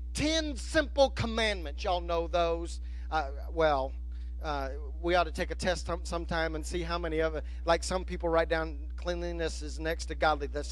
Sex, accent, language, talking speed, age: male, American, English, 180 wpm, 40-59